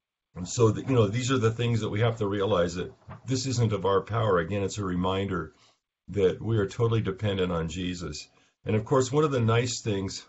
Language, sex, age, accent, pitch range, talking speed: English, male, 50-69, American, 90-110 Hz, 215 wpm